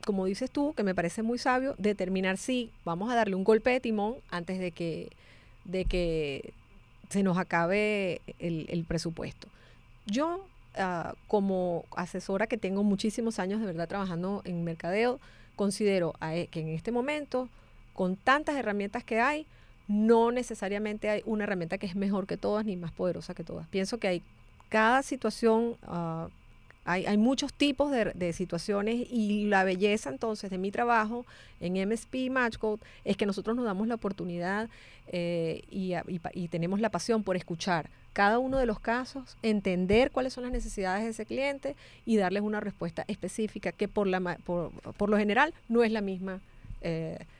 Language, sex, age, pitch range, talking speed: English, female, 30-49, 180-230 Hz, 170 wpm